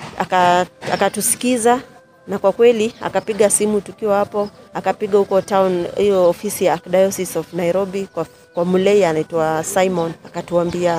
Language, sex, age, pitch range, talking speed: Swahili, female, 30-49, 180-220 Hz, 130 wpm